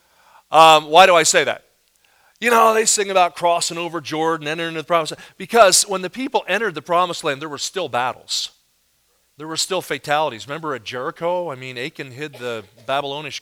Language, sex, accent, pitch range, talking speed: English, male, American, 145-205 Hz, 195 wpm